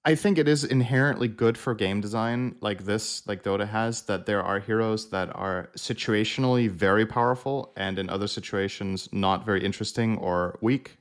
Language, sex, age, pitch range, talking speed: English, male, 30-49, 95-120 Hz, 175 wpm